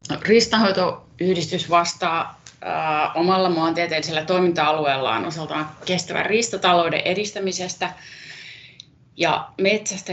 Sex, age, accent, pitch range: female, 30-49, native, 155-185 Hz